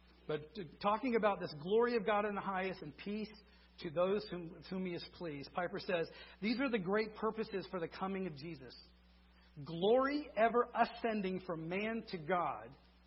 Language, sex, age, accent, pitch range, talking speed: English, male, 50-69, American, 145-210 Hz, 175 wpm